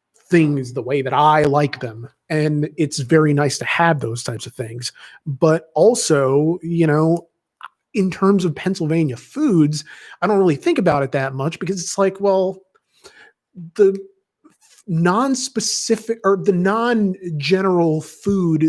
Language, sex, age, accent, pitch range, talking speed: English, male, 30-49, American, 140-185 Hz, 140 wpm